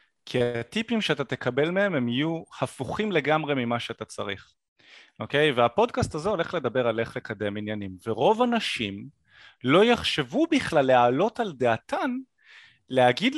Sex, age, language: male, 30-49, Hebrew